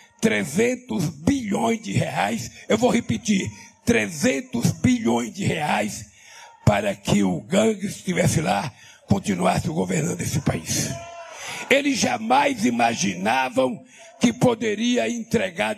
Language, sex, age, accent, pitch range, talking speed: Portuguese, male, 60-79, Brazilian, 210-250 Hz, 105 wpm